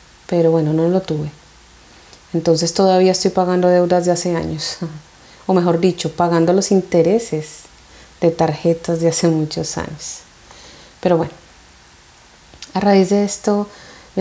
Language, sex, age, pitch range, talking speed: Spanish, female, 30-49, 155-180 Hz, 135 wpm